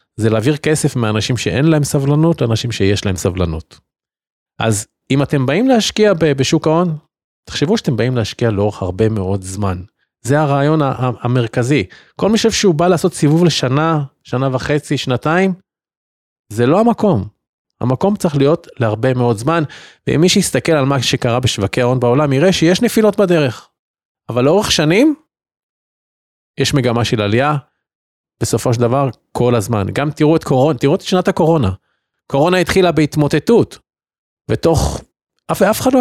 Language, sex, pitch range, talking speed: Hebrew, male, 120-170 Hz, 155 wpm